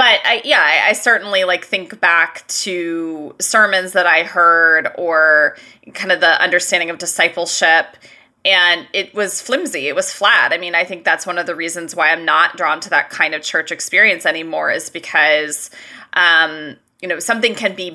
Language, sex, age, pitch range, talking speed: English, female, 20-39, 170-195 Hz, 185 wpm